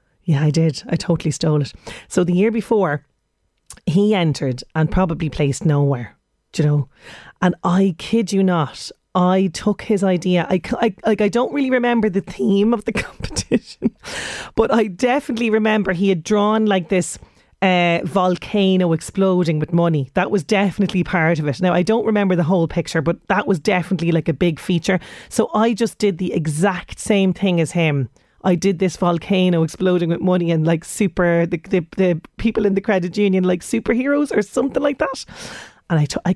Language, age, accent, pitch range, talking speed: English, 30-49, Irish, 170-215 Hz, 190 wpm